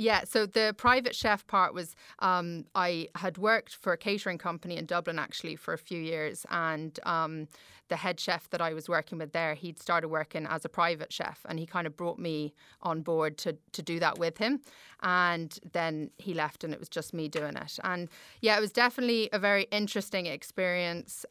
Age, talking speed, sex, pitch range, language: 30-49, 210 wpm, female, 160-190 Hz, English